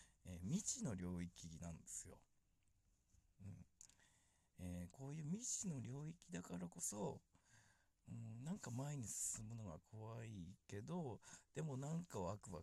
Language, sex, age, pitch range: Japanese, male, 50-69, 90-125 Hz